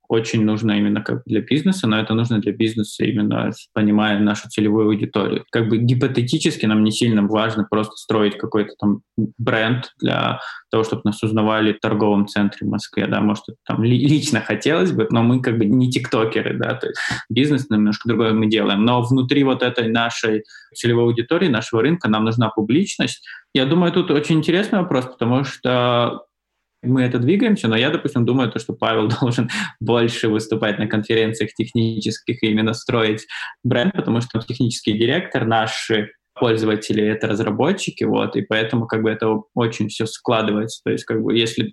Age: 20-39